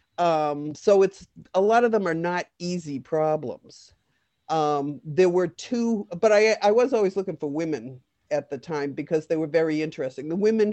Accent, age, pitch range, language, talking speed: American, 50-69, 145-185 Hz, English, 185 wpm